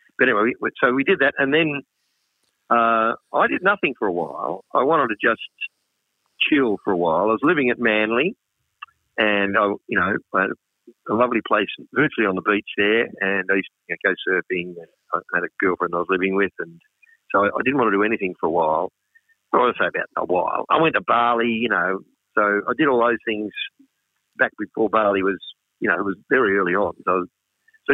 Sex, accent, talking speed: male, Australian, 215 wpm